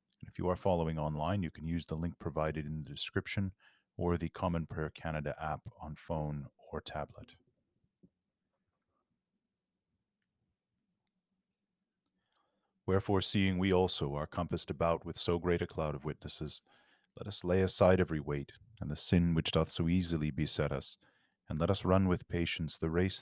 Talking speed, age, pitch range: 160 wpm, 40-59, 75-90 Hz